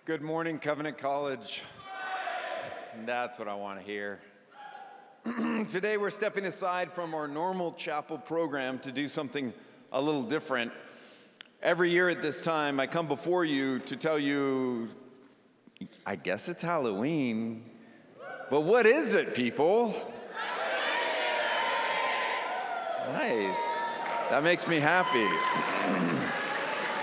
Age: 50-69